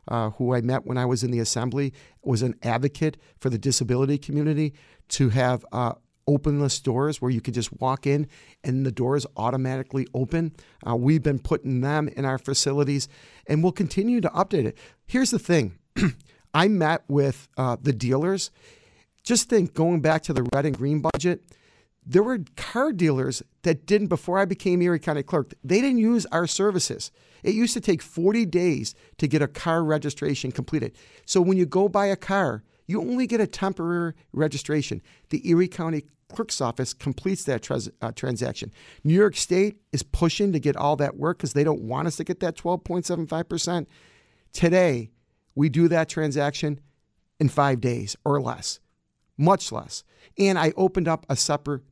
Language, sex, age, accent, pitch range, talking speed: English, male, 50-69, American, 135-175 Hz, 180 wpm